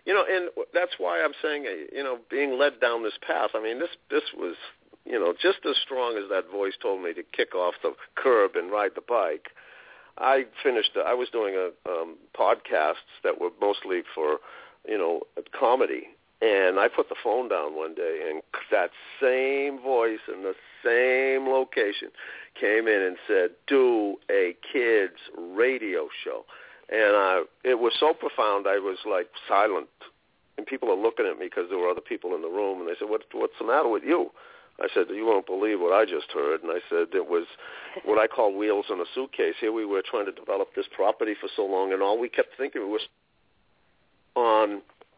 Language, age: English, 50-69